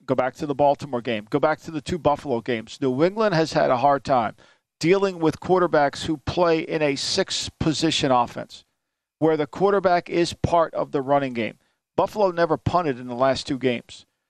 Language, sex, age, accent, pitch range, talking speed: English, male, 50-69, American, 140-180 Hz, 195 wpm